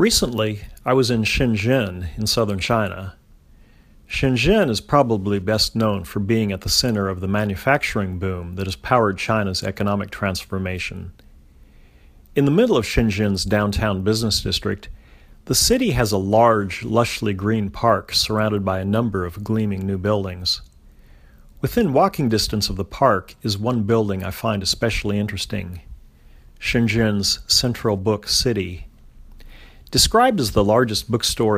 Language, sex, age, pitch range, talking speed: English, male, 40-59, 90-115 Hz, 140 wpm